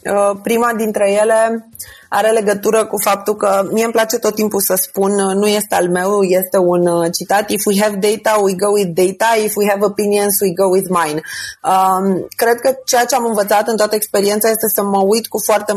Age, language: 30-49, Romanian